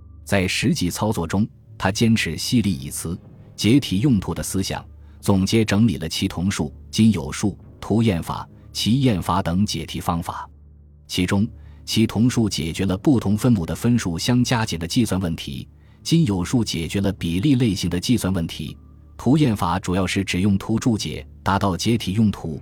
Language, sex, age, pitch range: Chinese, male, 20-39, 85-115 Hz